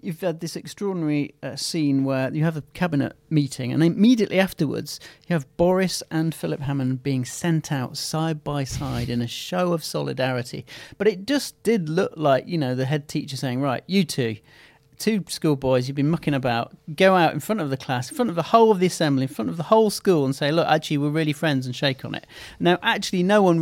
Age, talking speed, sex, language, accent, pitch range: 40-59, 225 wpm, male, English, British, 135-165 Hz